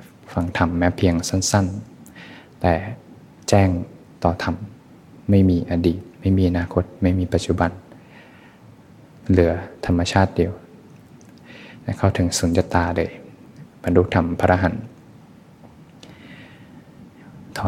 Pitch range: 90-105 Hz